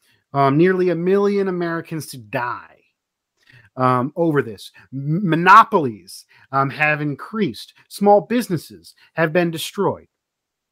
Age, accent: 30-49, American